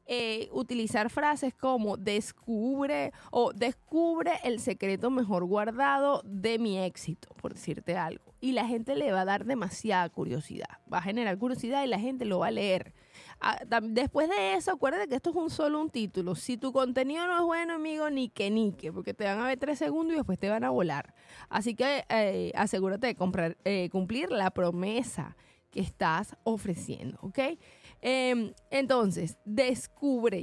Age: 20-39